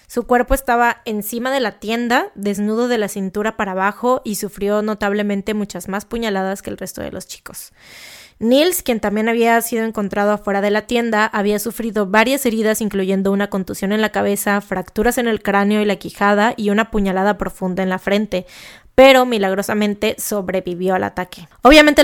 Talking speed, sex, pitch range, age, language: 175 wpm, female, 200-235 Hz, 20-39, Spanish